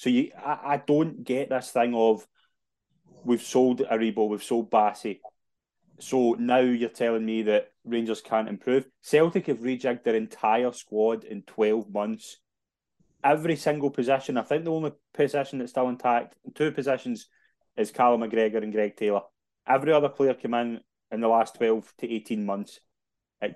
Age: 20-39